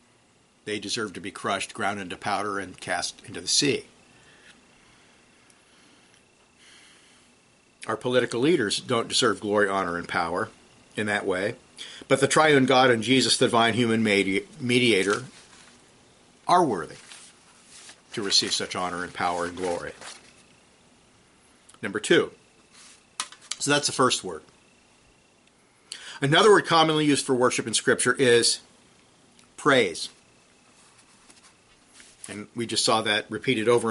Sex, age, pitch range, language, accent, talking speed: male, 50-69, 110-135 Hz, English, American, 125 wpm